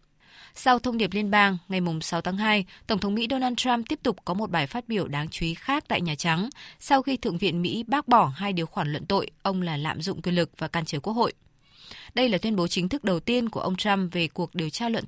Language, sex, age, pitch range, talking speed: Vietnamese, female, 20-39, 170-215 Hz, 265 wpm